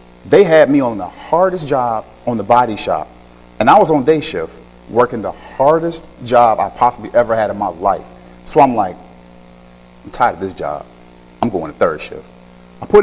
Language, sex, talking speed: English, male, 200 wpm